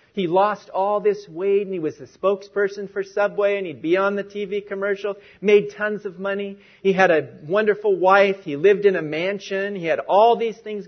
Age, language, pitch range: 40-59, English, 165-215 Hz